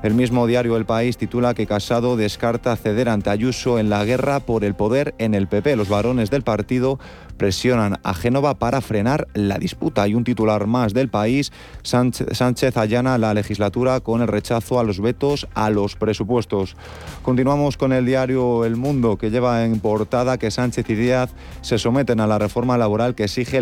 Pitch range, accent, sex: 105-125 Hz, Spanish, male